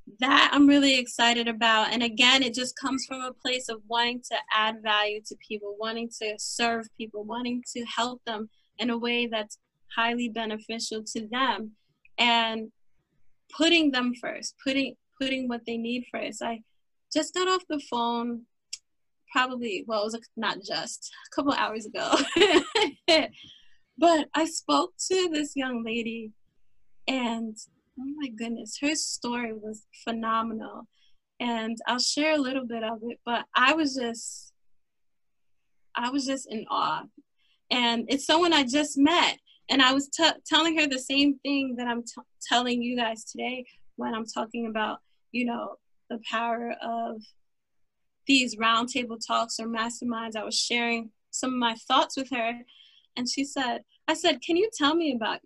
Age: 10-29